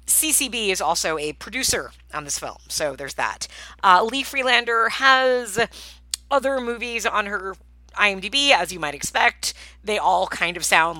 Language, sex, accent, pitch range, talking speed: English, female, American, 150-230 Hz, 160 wpm